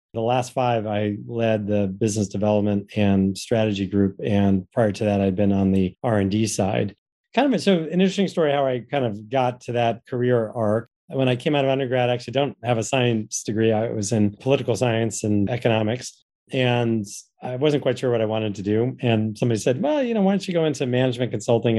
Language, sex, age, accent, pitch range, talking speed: English, male, 30-49, American, 105-125 Hz, 220 wpm